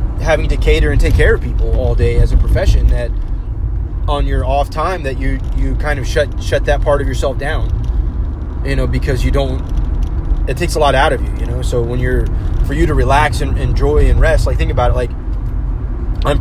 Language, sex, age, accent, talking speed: English, male, 20-39, American, 225 wpm